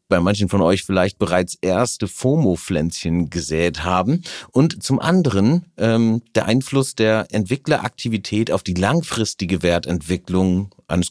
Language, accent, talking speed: German, German, 125 wpm